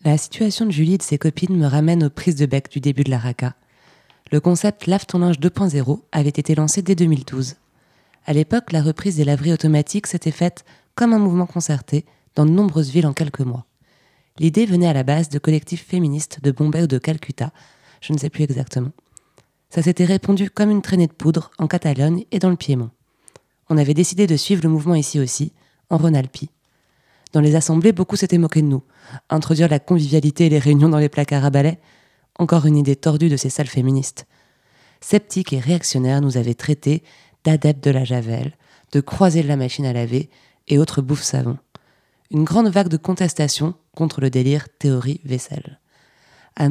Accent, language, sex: French, French, female